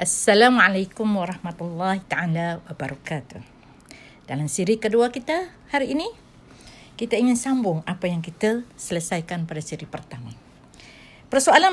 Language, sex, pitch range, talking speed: Malay, female, 165-245 Hz, 105 wpm